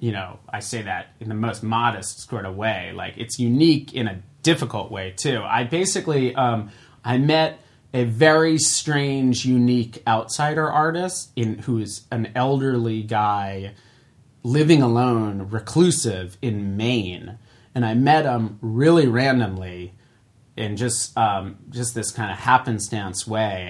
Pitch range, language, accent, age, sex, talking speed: 110-135 Hz, English, American, 30-49, male, 140 wpm